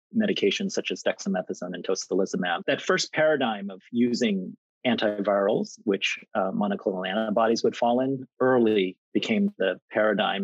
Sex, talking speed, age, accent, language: male, 130 wpm, 40-59, American, English